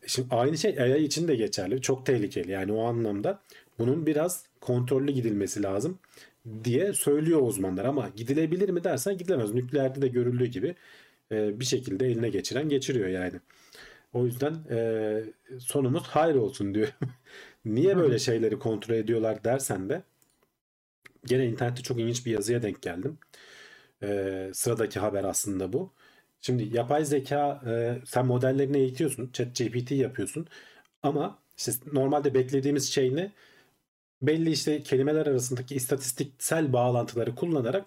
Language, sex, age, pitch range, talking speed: Turkish, male, 40-59, 115-145 Hz, 130 wpm